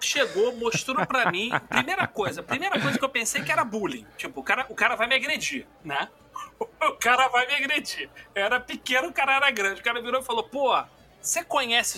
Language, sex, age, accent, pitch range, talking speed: Portuguese, male, 40-59, Brazilian, 195-260 Hz, 220 wpm